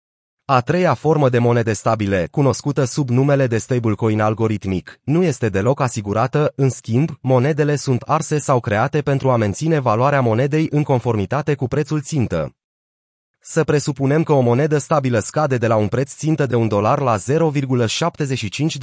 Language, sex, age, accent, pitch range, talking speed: Romanian, male, 30-49, native, 115-150 Hz, 160 wpm